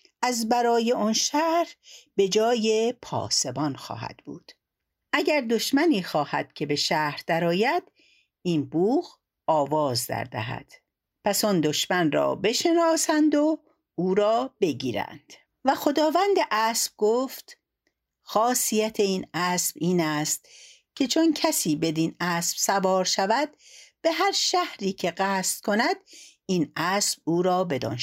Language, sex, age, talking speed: Persian, female, 60-79, 120 wpm